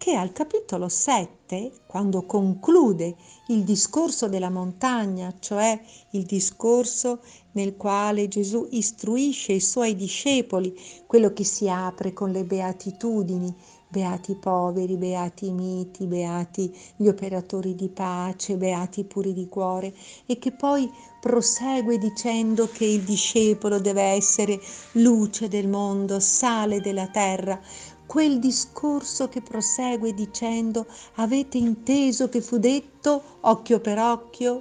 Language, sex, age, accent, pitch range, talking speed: Italian, female, 50-69, native, 190-240 Hz, 120 wpm